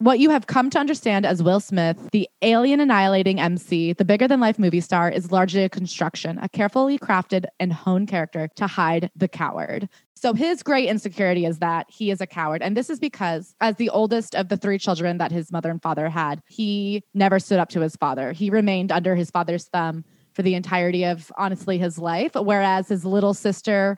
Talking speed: 210 wpm